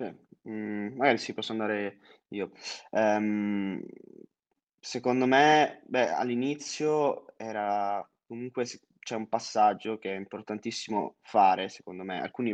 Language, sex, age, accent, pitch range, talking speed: Italian, male, 20-39, native, 100-115 Hz, 110 wpm